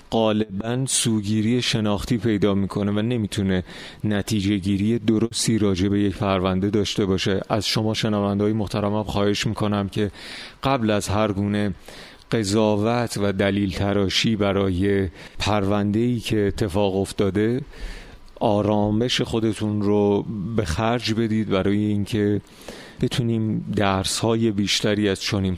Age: 30-49